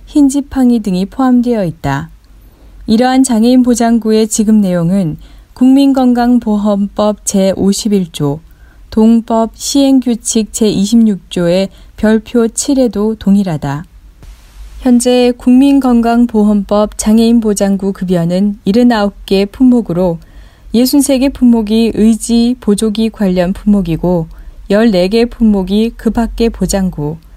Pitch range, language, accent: 190-245 Hz, Korean, native